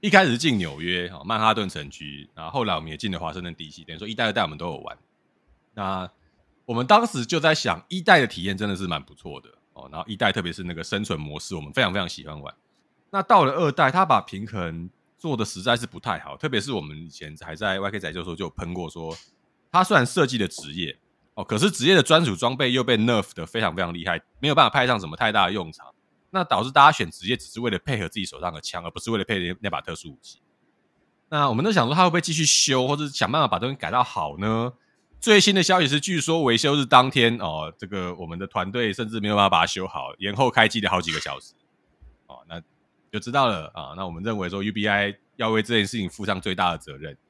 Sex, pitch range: male, 90-130 Hz